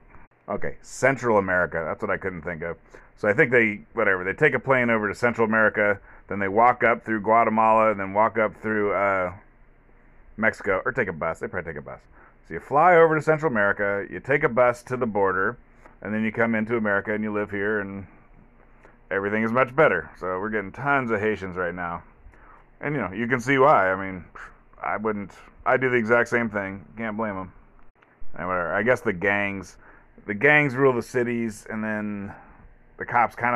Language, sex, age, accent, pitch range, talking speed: English, male, 30-49, American, 95-115 Hz, 210 wpm